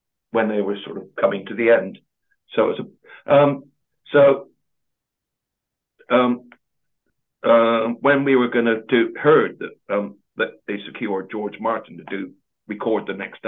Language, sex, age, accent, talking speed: English, male, 60-79, British, 150 wpm